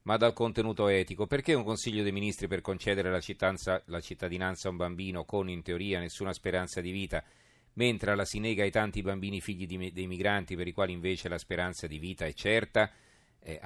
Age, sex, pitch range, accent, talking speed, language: 40-59, male, 85-105 Hz, native, 205 wpm, Italian